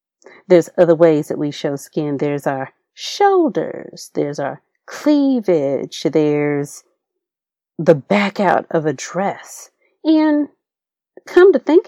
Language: English